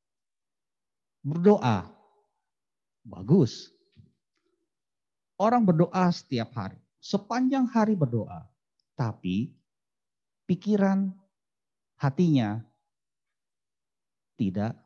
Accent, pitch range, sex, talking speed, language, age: native, 120-200 Hz, male, 50 wpm, Indonesian, 50-69